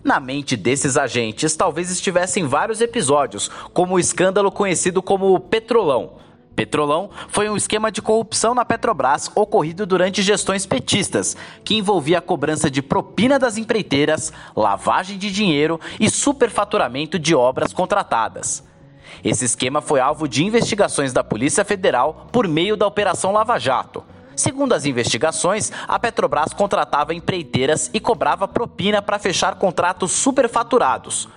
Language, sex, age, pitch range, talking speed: Portuguese, male, 20-39, 155-215 Hz, 135 wpm